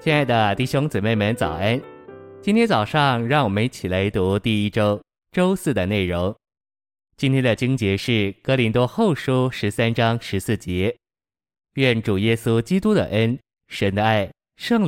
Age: 20-39